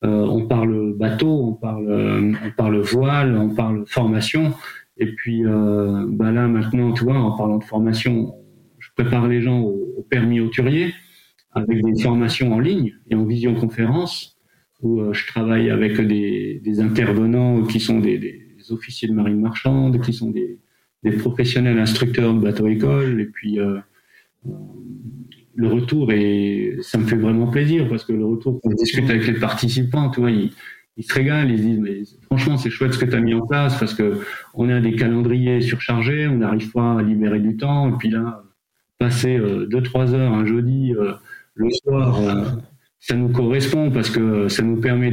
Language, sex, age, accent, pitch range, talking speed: French, male, 40-59, French, 110-125 Hz, 185 wpm